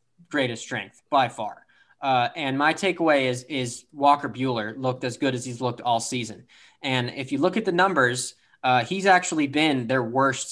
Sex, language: male, English